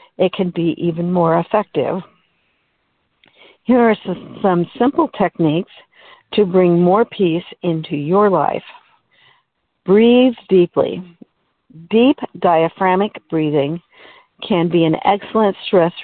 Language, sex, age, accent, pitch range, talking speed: English, female, 60-79, American, 165-210 Hz, 105 wpm